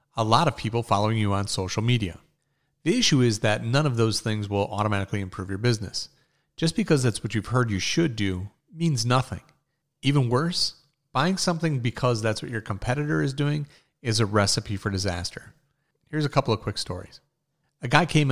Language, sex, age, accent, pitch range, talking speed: English, male, 40-59, American, 100-135 Hz, 190 wpm